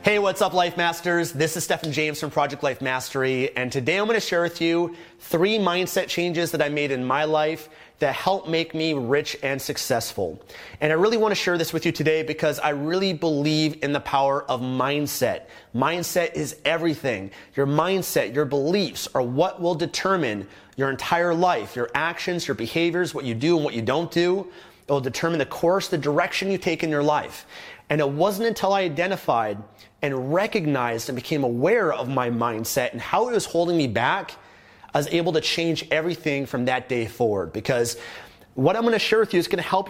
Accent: American